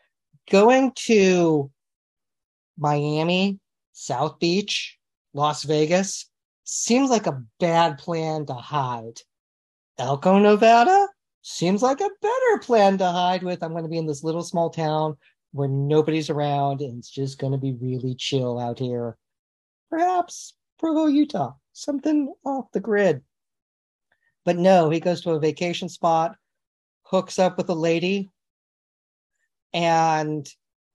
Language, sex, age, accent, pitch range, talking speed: English, male, 40-59, American, 145-195 Hz, 130 wpm